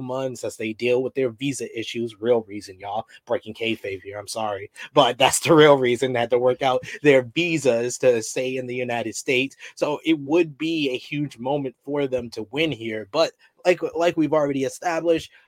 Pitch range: 125-150 Hz